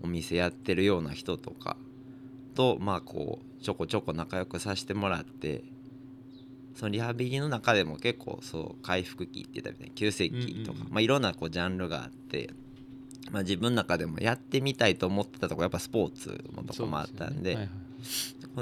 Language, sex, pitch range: Japanese, male, 95-130 Hz